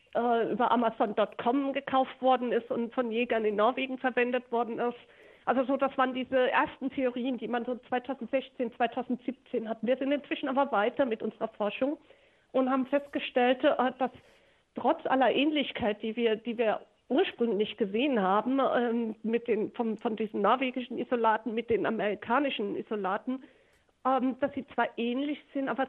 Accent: German